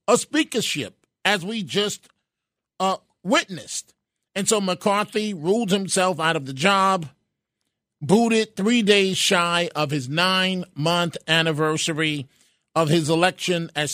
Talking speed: 120 wpm